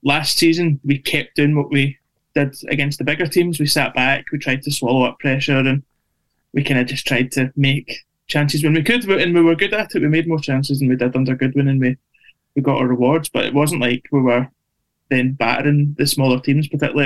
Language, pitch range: English, 135-150 Hz